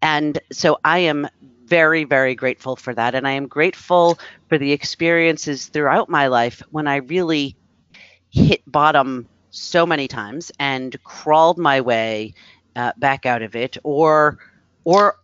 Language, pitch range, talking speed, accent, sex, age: English, 130-180 Hz, 150 wpm, American, female, 40-59